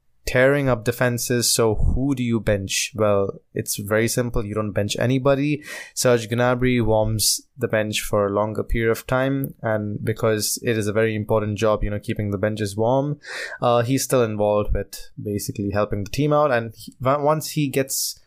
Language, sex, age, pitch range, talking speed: English, male, 20-39, 105-125 Hz, 180 wpm